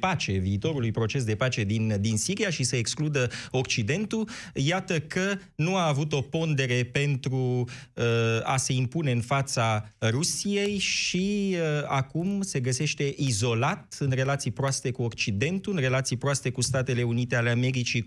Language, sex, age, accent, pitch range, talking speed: Romanian, male, 30-49, native, 125-155 Hz, 145 wpm